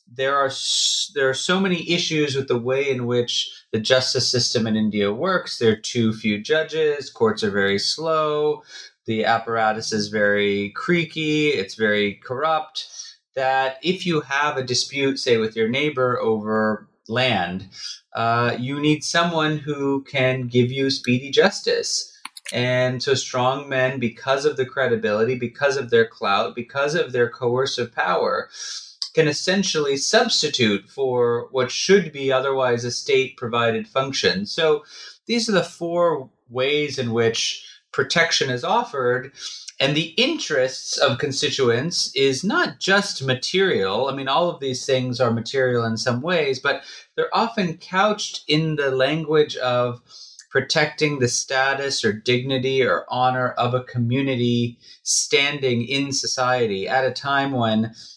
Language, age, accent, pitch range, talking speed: English, 30-49, American, 120-155 Hz, 145 wpm